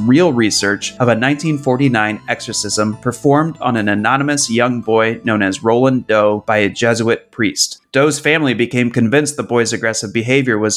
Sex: male